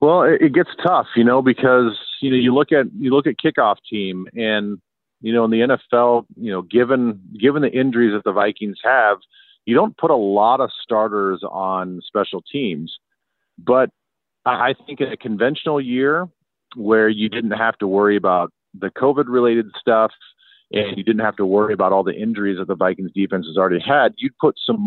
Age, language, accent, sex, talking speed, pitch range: 40-59, English, American, male, 200 wpm, 95-125 Hz